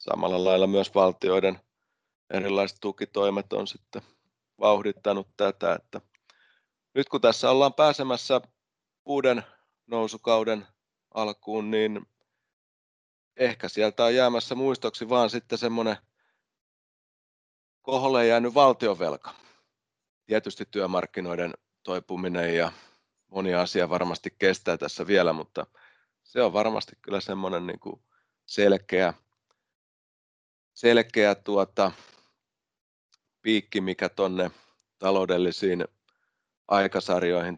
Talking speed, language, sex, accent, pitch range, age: 85 wpm, Finnish, male, native, 90-110 Hz, 30-49